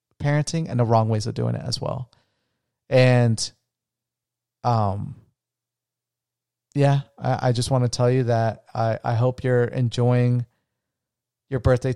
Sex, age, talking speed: male, 30-49, 140 wpm